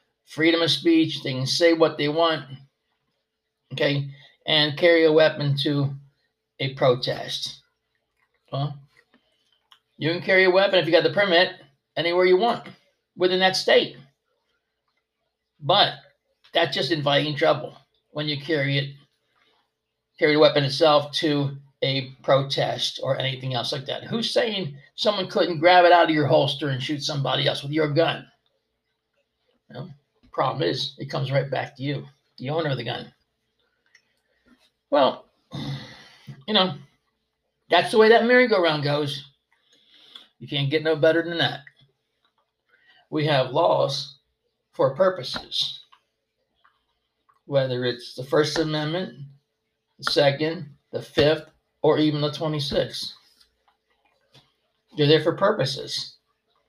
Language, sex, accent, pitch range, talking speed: English, male, American, 140-170 Hz, 130 wpm